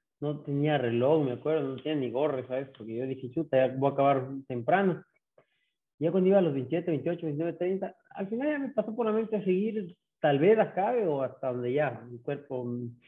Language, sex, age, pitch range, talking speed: Spanish, male, 30-49, 125-155 Hz, 210 wpm